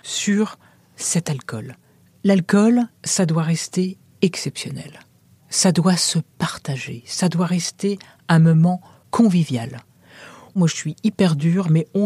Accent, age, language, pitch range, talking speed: French, 40-59, French, 155-200 Hz, 125 wpm